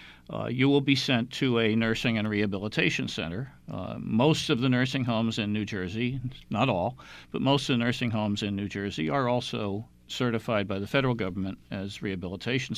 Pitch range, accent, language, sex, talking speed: 100-130 Hz, American, English, male, 190 wpm